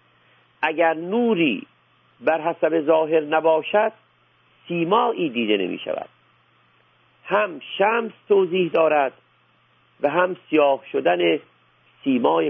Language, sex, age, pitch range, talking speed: Persian, male, 50-69, 130-170 Hz, 90 wpm